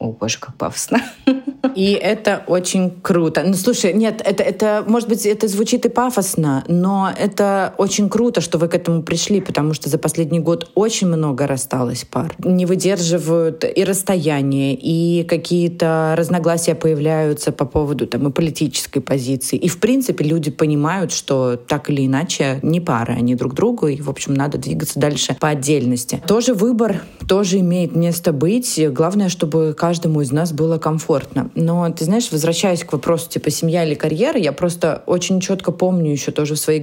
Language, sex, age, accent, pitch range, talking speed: Russian, female, 20-39, native, 150-185 Hz, 170 wpm